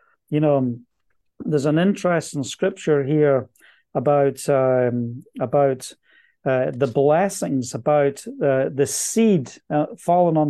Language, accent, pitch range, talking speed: English, British, 145-195 Hz, 115 wpm